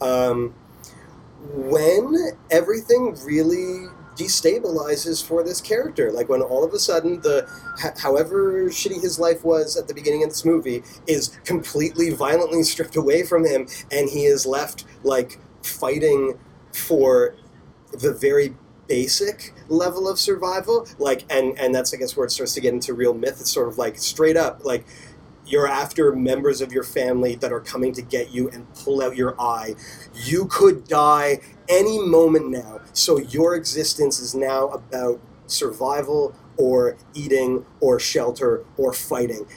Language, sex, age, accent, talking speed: English, male, 30-49, American, 160 wpm